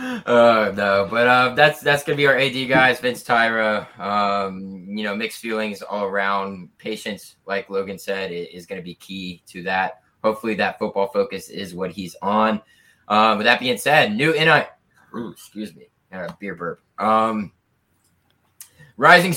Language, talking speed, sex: English, 165 wpm, male